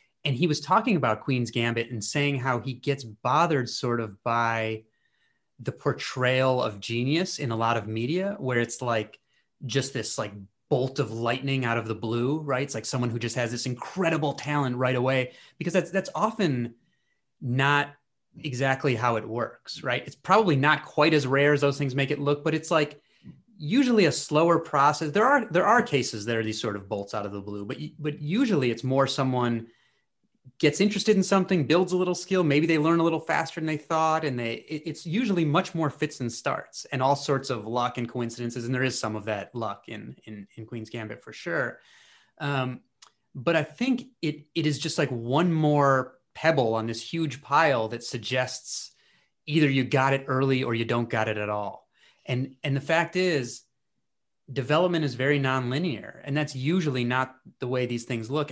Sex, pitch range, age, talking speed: male, 120-155 Hz, 30-49, 200 wpm